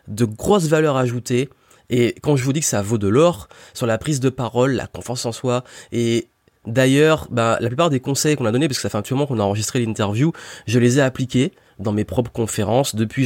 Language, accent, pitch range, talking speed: French, French, 110-130 Hz, 240 wpm